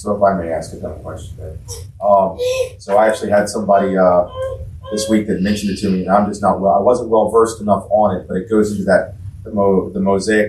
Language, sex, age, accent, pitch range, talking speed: English, male, 30-49, American, 95-105 Hz, 245 wpm